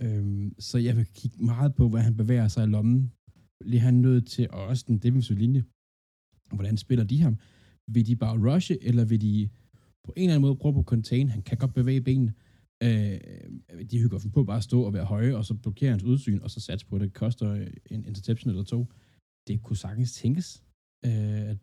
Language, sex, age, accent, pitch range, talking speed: Danish, male, 20-39, native, 100-120 Hz, 220 wpm